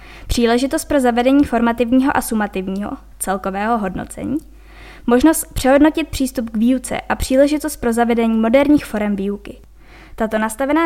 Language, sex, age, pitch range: Czech, female, 20-39, 220-265 Hz